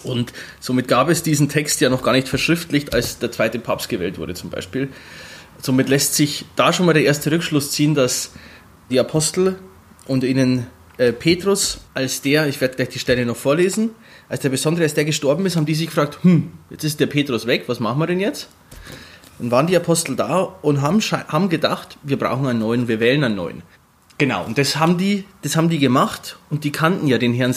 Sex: male